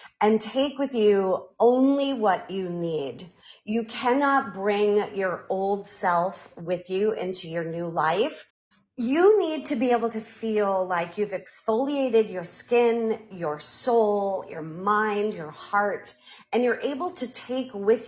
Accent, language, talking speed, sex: American, English, 145 wpm, female